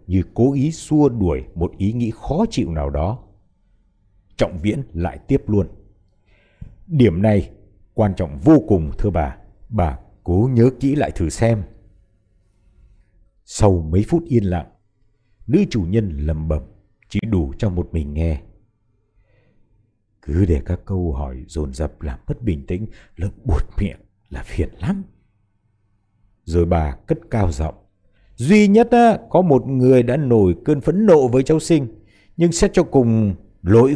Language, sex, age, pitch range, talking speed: Vietnamese, male, 60-79, 95-140 Hz, 155 wpm